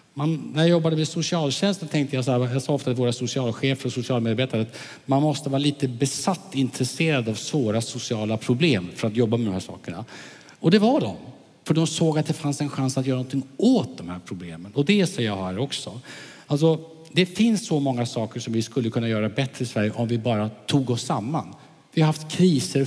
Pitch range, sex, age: 110-150 Hz, male, 50-69